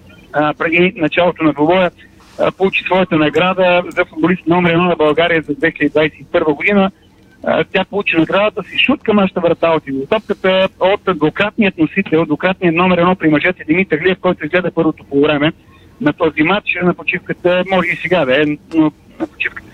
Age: 50-69